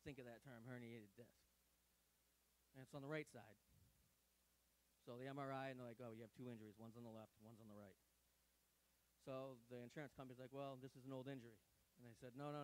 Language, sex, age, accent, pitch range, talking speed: English, male, 30-49, American, 95-135 Hz, 225 wpm